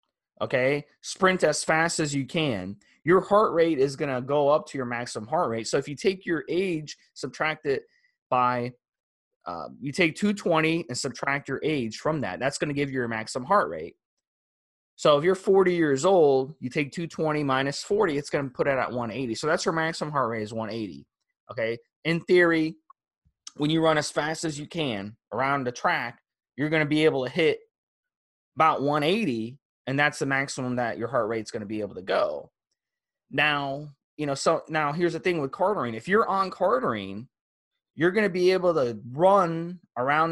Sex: male